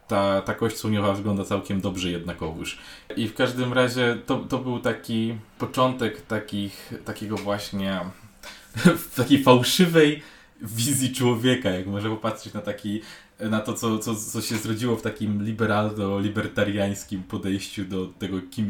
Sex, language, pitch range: male, Polish, 105-120 Hz